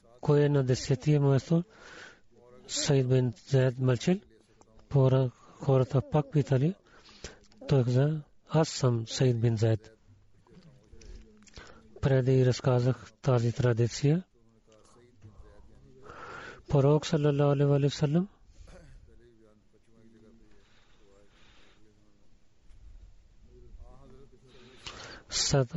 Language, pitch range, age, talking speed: Bulgarian, 115-140 Hz, 40-59, 65 wpm